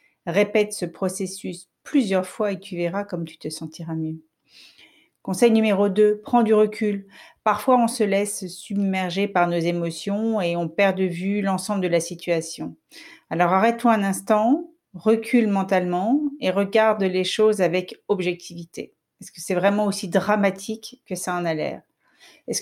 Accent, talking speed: French, 160 wpm